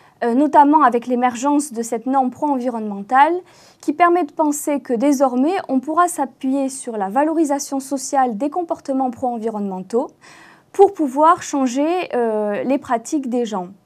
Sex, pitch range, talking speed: female, 240-315 Hz, 135 wpm